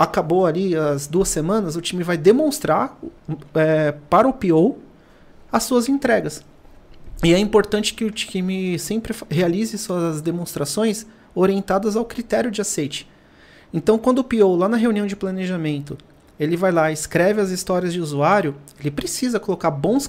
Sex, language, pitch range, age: male, Portuguese, 165-210 Hz, 40-59